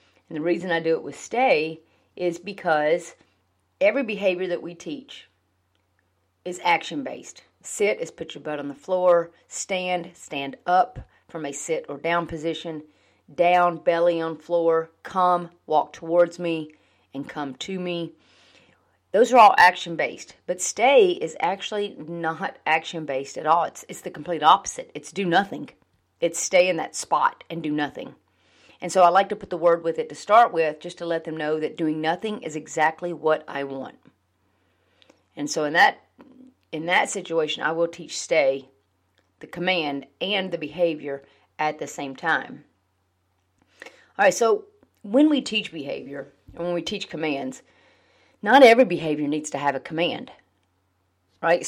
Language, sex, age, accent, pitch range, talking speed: English, female, 40-59, American, 145-180 Hz, 165 wpm